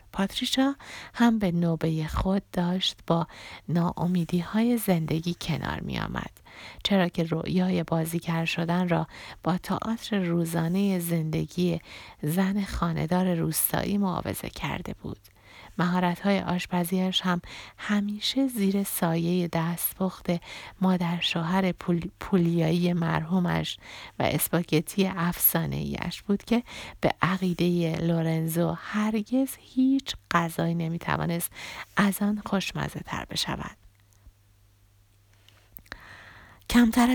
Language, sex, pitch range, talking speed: Persian, female, 160-190 Hz, 95 wpm